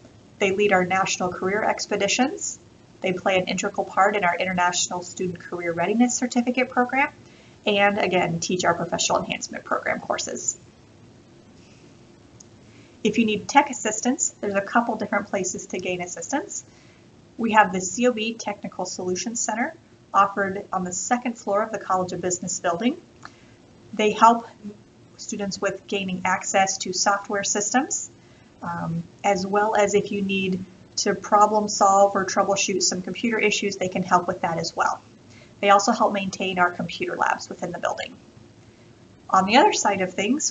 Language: English